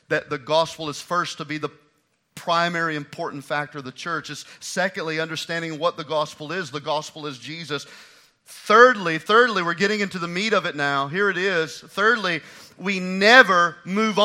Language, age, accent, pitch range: English, 40-59, American, 170-240 Hz